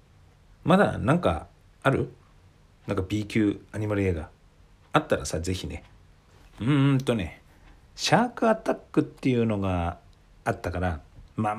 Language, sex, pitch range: Japanese, male, 85-105 Hz